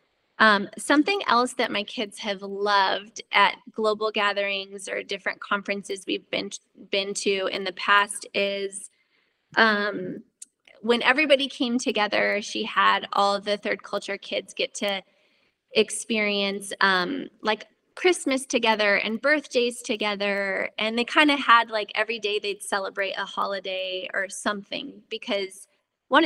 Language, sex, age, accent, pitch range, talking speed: English, female, 20-39, American, 200-245 Hz, 135 wpm